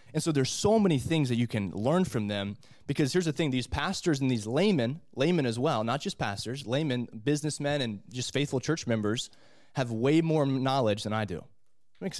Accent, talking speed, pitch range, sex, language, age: American, 205 wpm, 110-145 Hz, male, English, 20-39